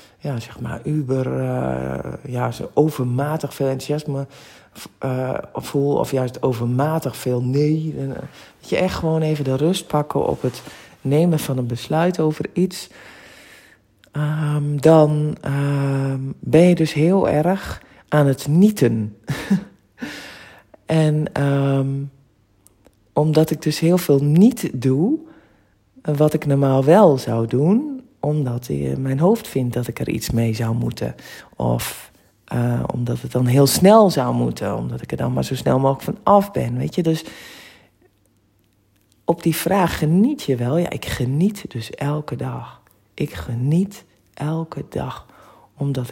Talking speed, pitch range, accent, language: 145 wpm, 120-155 Hz, Dutch, Dutch